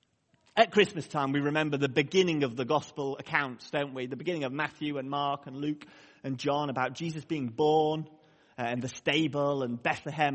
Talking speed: 185 wpm